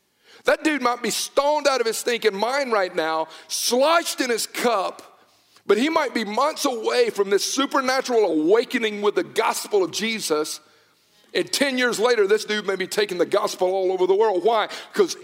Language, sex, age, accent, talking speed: English, male, 50-69, American, 190 wpm